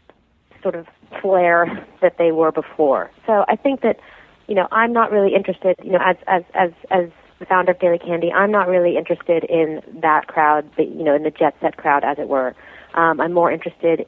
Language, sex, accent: English, female, American